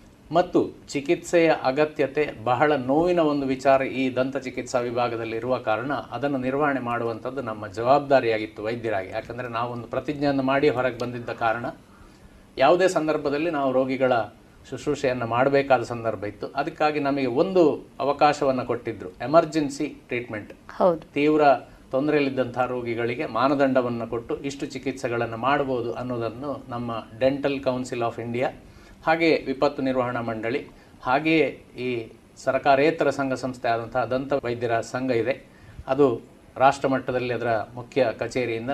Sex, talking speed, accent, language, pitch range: male, 110 wpm, native, Kannada, 115-140 Hz